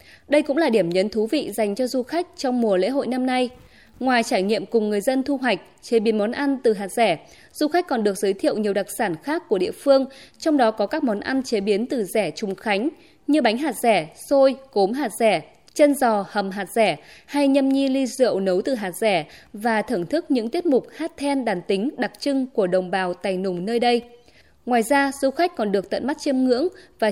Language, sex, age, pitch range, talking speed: Vietnamese, female, 20-39, 210-275 Hz, 240 wpm